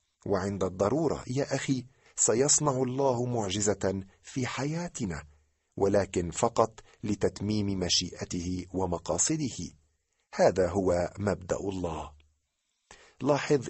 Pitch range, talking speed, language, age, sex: 90-120 Hz, 85 wpm, Arabic, 40-59, male